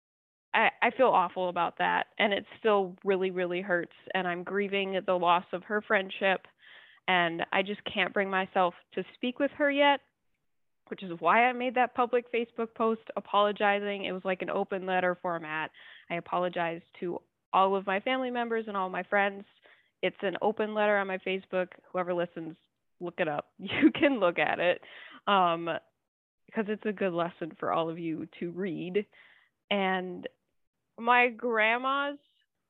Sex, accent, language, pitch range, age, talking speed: female, American, English, 175-220 Hz, 20-39, 165 wpm